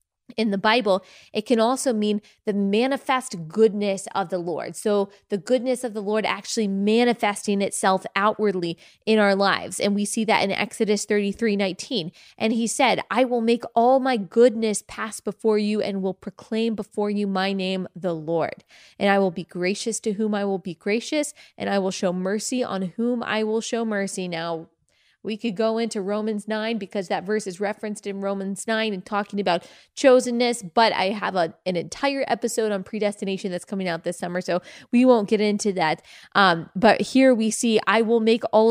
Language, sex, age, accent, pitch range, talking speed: English, female, 20-39, American, 195-225 Hz, 195 wpm